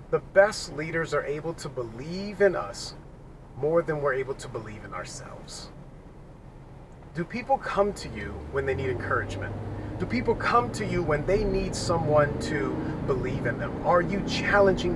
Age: 30-49